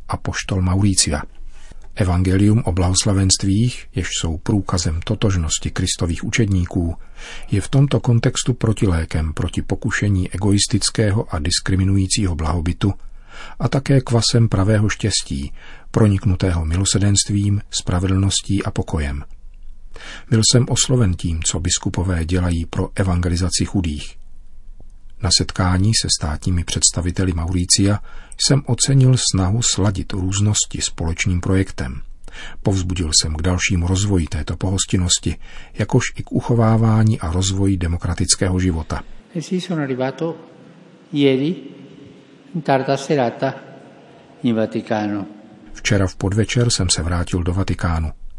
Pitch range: 90-110 Hz